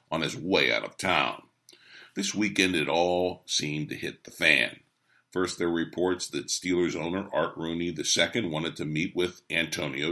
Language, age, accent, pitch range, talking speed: English, 50-69, American, 85-120 Hz, 180 wpm